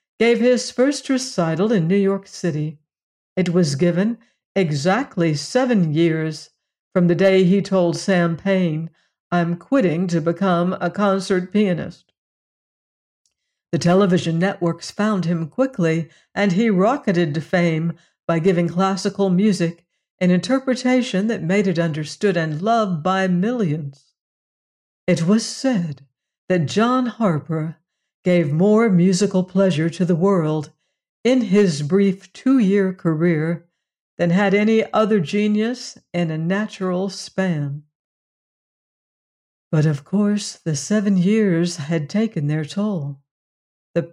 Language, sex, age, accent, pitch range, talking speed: English, female, 60-79, American, 170-205 Hz, 125 wpm